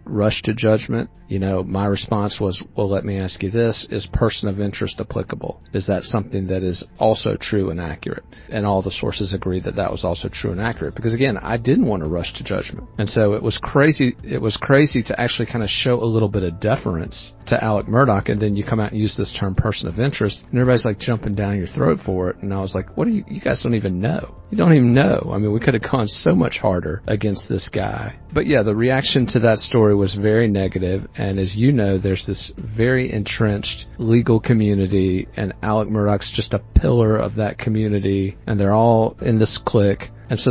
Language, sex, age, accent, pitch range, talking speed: English, male, 40-59, American, 95-115 Hz, 235 wpm